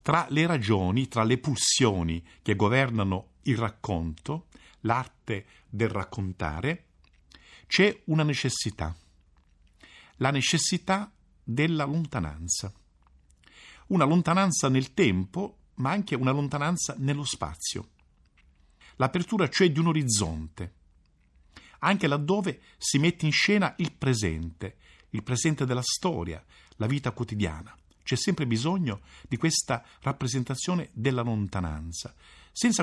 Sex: male